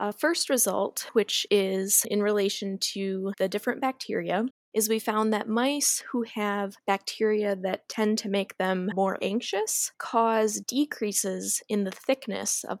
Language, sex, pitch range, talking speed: English, female, 200-240 Hz, 150 wpm